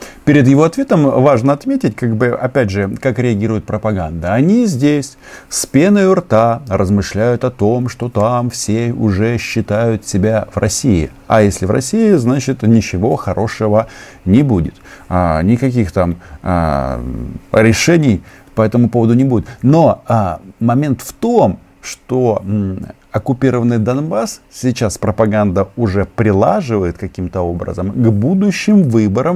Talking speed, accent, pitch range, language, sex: 120 wpm, native, 95-125 Hz, Russian, male